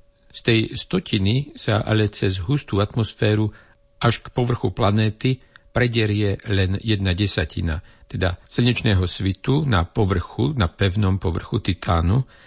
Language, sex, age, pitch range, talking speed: Slovak, male, 50-69, 95-115 Hz, 120 wpm